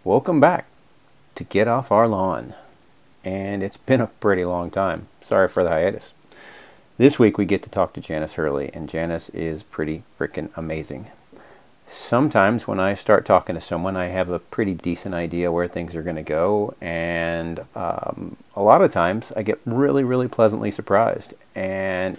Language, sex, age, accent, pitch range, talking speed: English, male, 40-59, American, 85-115 Hz, 175 wpm